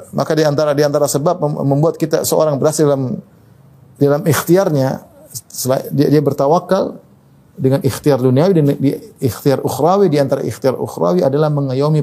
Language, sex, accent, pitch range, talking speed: Indonesian, male, native, 120-155 Hz, 130 wpm